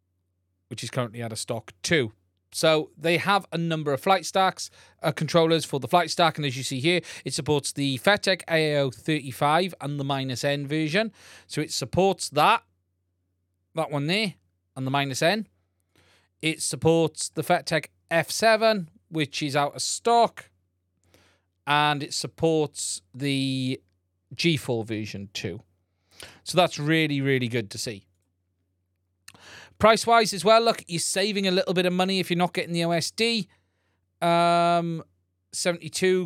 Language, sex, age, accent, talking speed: English, male, 30-49, British, 150 wpm